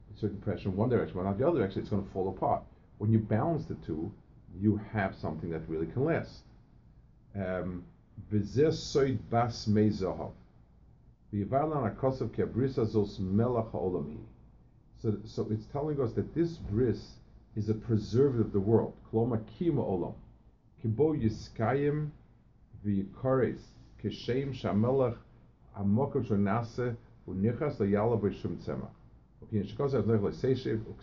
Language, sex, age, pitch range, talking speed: English, male, 50-69, 105-120 Hz, 105 wpm